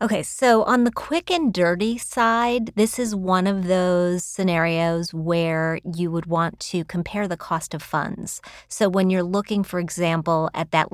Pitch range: 160-200 Hz